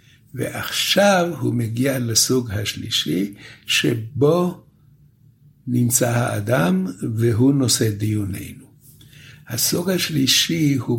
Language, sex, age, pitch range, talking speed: Hebrew, male, 60-79, 110-135 Hz, 75 wpm